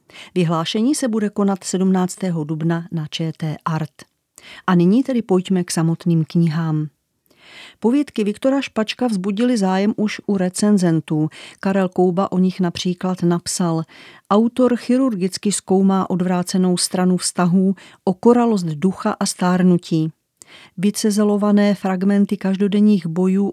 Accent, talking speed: native, 115 wpm